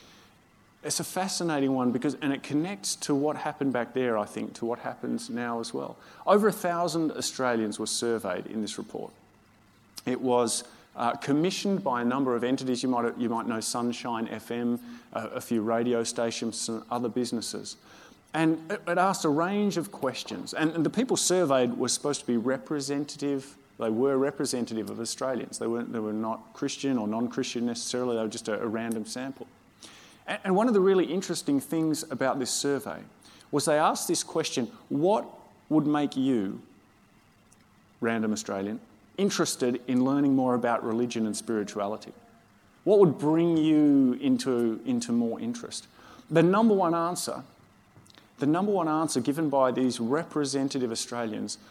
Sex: male